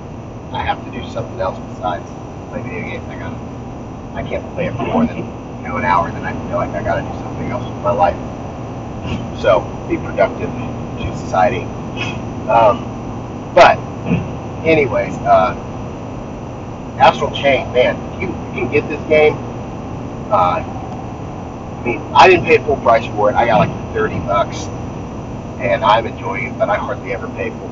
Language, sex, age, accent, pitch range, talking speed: English, male, 30-49, American, 120-135 Hz, 175 wpm